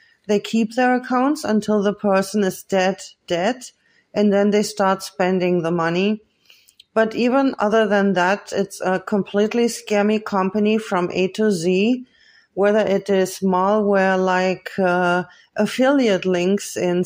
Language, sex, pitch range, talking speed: English, female, 185-215 Hz, 140 wpm